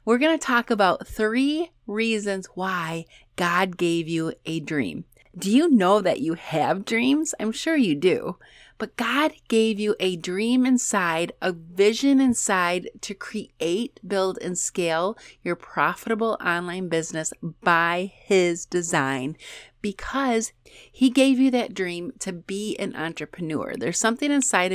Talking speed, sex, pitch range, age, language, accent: 145 wpm, female, 170-225 Hz, 30-49, English, American